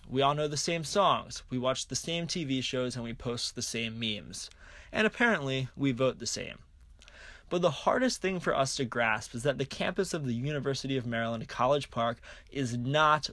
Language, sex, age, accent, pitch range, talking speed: English, male, 20-39, American, 115-165 Hz, 205 wpm